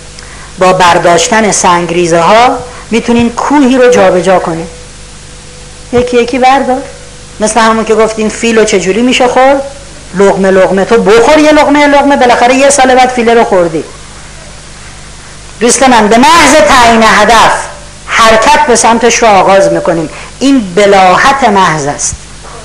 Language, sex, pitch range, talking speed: Persian, female, 185-250 Hz, 140 wpm